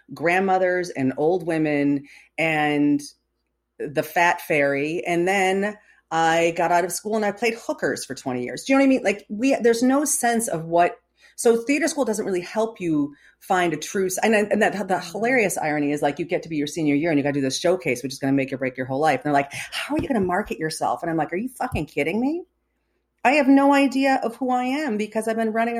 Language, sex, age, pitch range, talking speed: English, female, 40-59, 155-230 Hz, 250 wpm